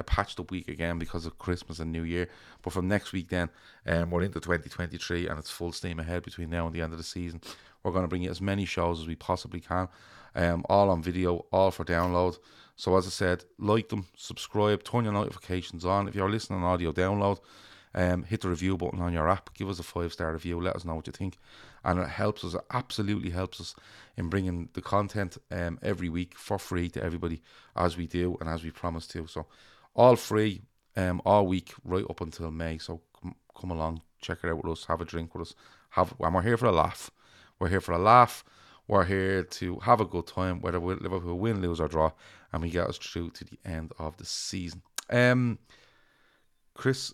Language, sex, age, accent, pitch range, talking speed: English, male, 30-49, Irish, 85-100 Hz, 225 wpm